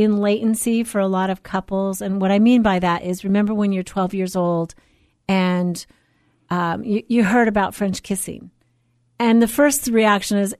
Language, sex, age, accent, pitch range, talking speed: English, female, 40-59, American, 190-225 Hz, 185 wpm